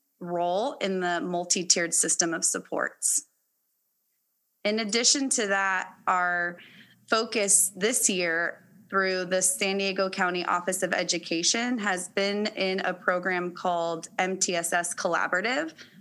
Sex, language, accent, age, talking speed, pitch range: female, English, American, 20-39, 115 wpm, 180-200 Hz